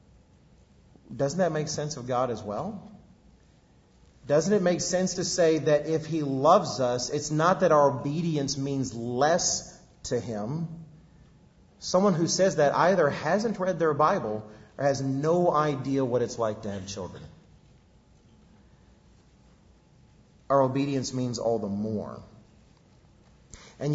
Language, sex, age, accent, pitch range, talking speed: English, male, 40-59, American, 130-185 Hz, 135 wpm